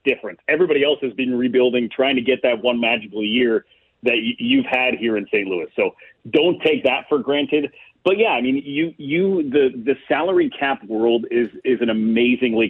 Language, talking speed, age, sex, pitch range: English, 195 wpm, 40-59, male, 125-150 Hz